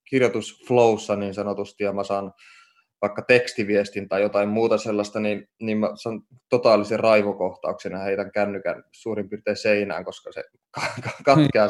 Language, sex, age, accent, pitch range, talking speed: Finnish, male, 20-39, native, 100-115 Hz, 140 wpm